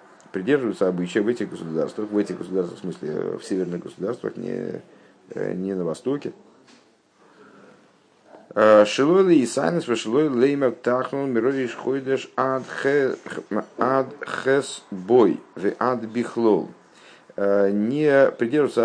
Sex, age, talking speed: male, 50-69, 55 wpm